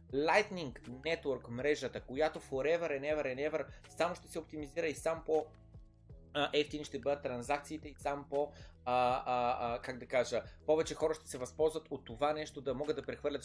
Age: 20-39